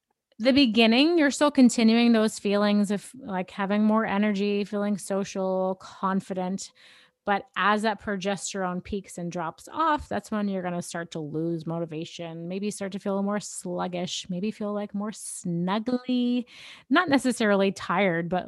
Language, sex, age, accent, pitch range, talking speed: English, female, 30-49, American, 180-225 Hz, 150 wpm